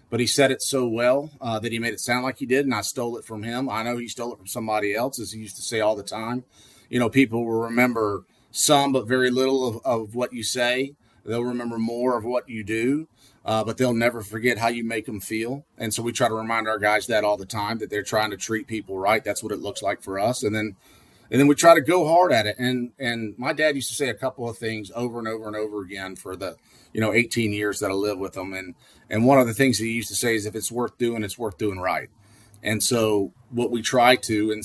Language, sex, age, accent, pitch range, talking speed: English, male, 30-49, American, 110-130 Hz, 275 wpm